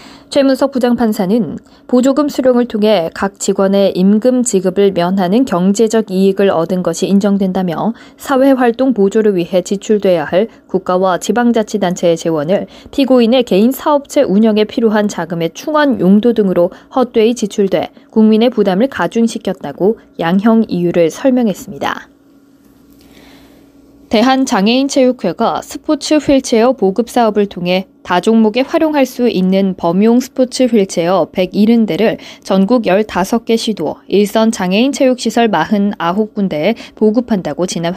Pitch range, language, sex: 195-260 Hz, Korean, female